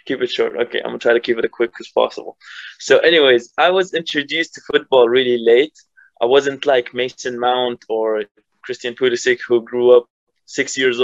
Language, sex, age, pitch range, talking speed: English, male, 20-39, 115-135 Hz, 195 wpm